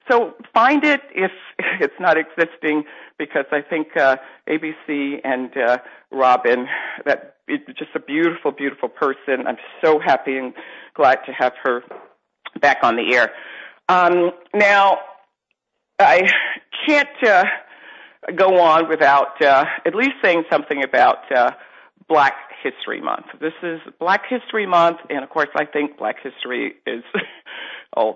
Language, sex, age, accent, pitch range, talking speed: English, female, 50-69, American, 135-190 Hz, 140 wpm